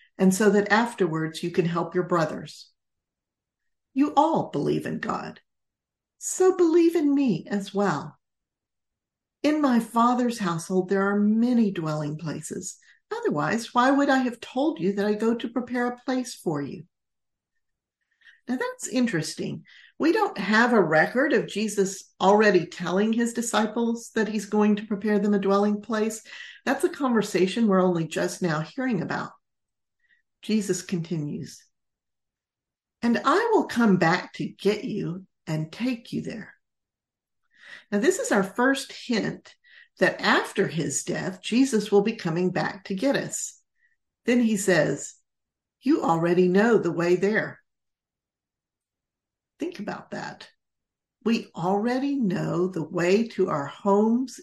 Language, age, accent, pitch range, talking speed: English, 50-69, American, 180-245 Hz, 140 wpm